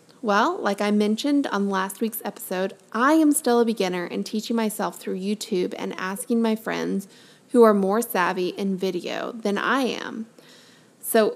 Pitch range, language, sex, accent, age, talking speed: 200-255 Hz, English, female, American, 20-39, 170 wpm